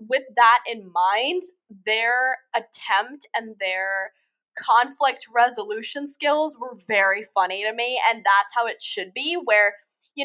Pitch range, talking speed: 200-255 Hz, 140 wpm